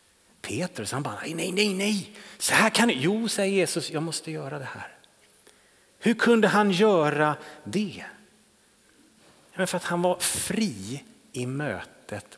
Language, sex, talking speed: Swedish, male, 145 wpm